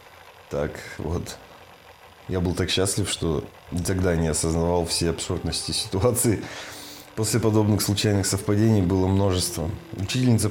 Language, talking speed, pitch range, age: Russian, 115 wpm, 90-105 Hz, 20-39